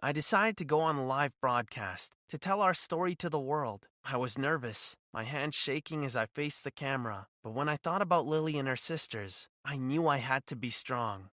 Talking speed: 220 wpm